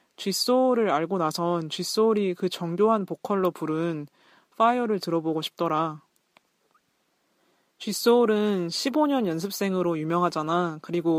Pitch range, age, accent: 160-195 Hz, 20-39, native